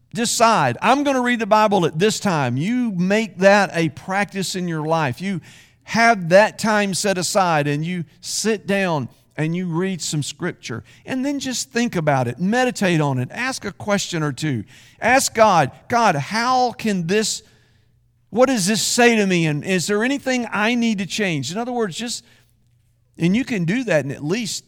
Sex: male